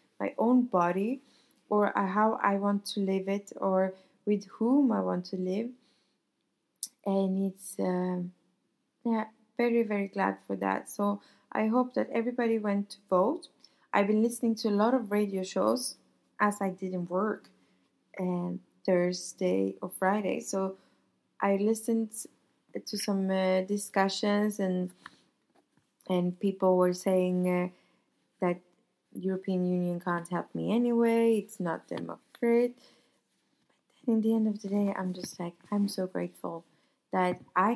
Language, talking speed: English, 145 wpm